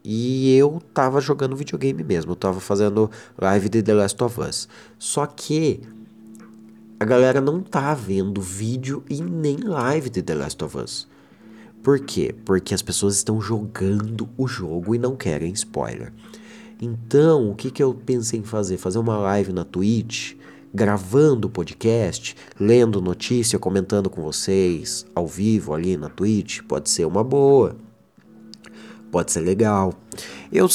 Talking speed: 150 wpm